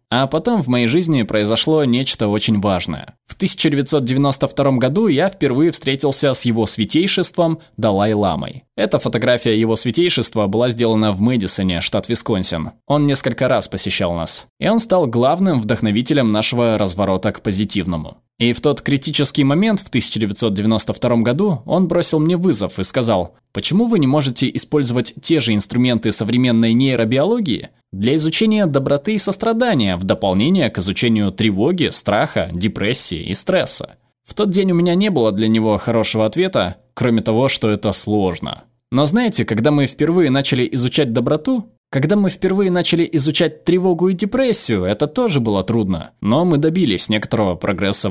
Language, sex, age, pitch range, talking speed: Russian, male, 20-39, 110-160 Hz, 150 wpm